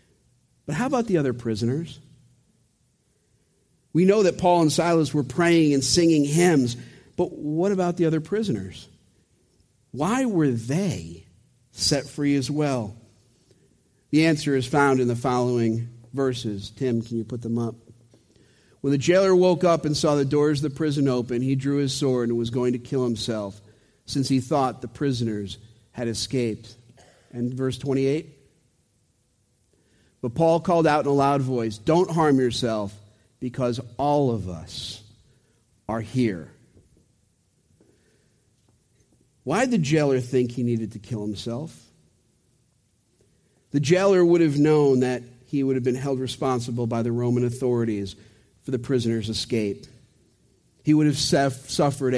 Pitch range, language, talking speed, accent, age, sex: 115-145 Hz, English, 145 wpm, American, 50-69, male